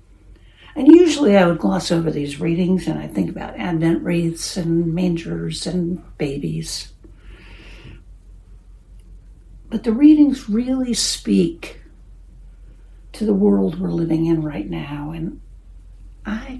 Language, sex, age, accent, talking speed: English, female, 60-79, American, 120 wpm